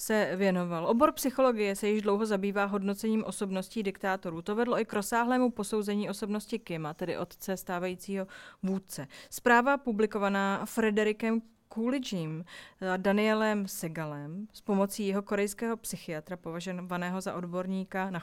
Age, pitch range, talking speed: 30-49, 190-225 Hz, 130 wpm